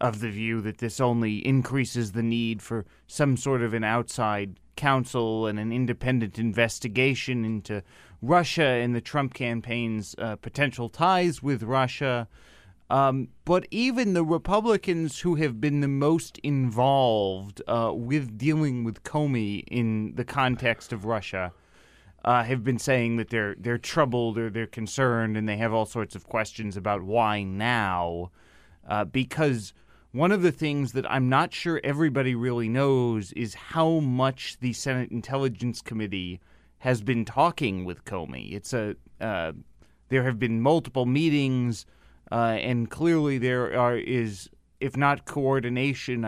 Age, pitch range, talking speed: 30-49, 110-135 Hz, 150 wpm